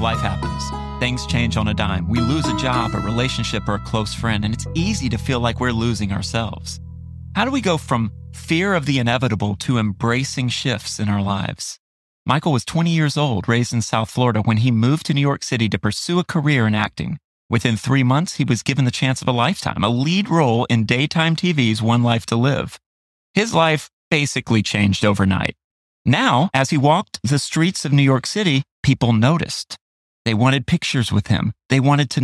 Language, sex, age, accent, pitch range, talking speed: English, male, 30-49, American, 105-140 Hz, 205 wpm